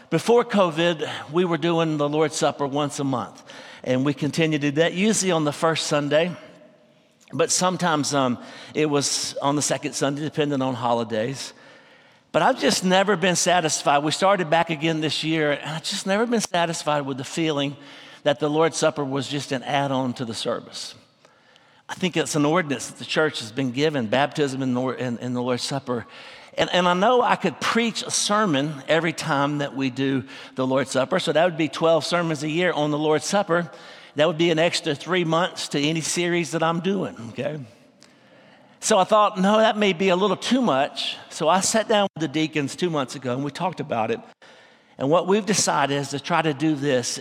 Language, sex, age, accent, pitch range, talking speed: English, male, 60-79, American, 140-180 Hz, 205 wpm